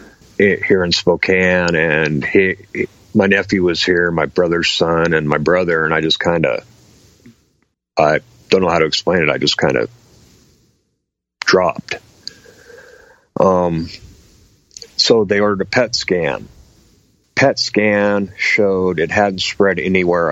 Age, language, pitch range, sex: 50-69, English, 90-105 Hz, male